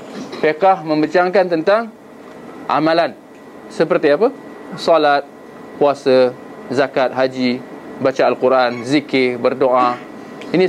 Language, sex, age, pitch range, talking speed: Malay, male, 20-39, 145-175 Hz, 85 wpm